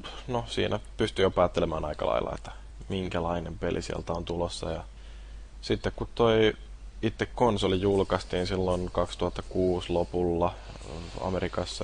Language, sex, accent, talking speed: Finnish, male, native, 120 wpm